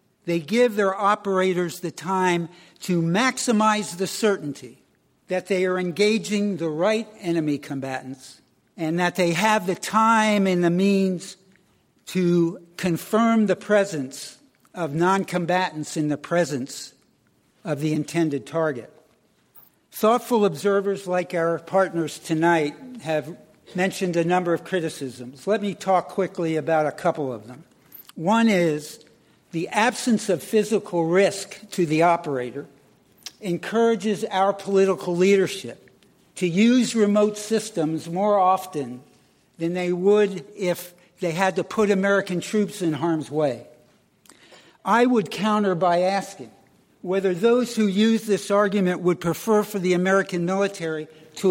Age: 60-79